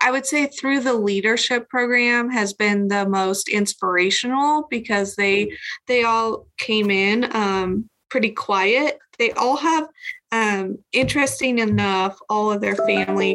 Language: English